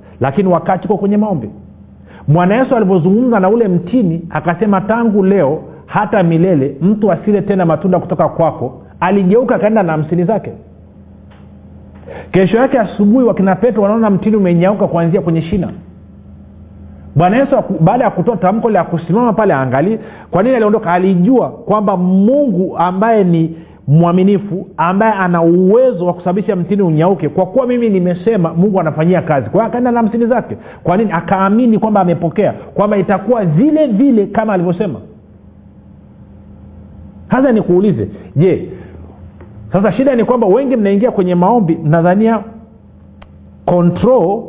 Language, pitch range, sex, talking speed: Swahili, 160-215 Hz, male, 135 wpm